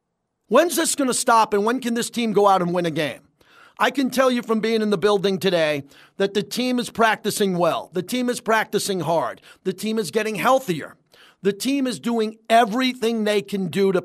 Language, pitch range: English, 190-235 Hz